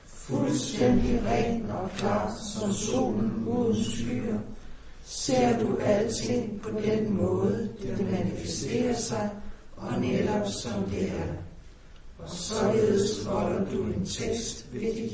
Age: 60-79